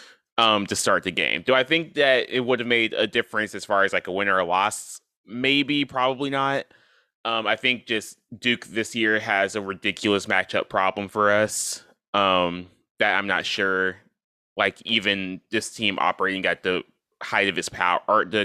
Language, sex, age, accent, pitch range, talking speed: English, male, 20-39, American, 95-120 Hz, 190 wpm